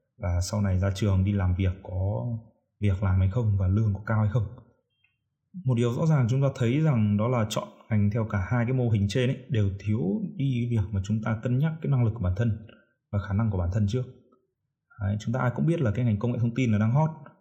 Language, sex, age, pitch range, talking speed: Vietnamese, male, 20-39, 105-130 Hz, 260 wpm